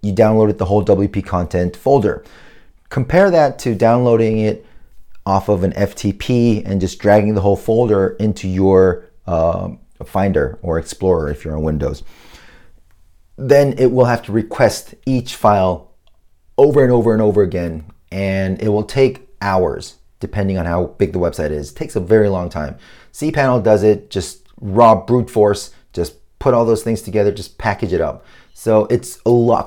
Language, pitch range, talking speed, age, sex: English, 95-115 Hz, 170 wpm, 30-49, male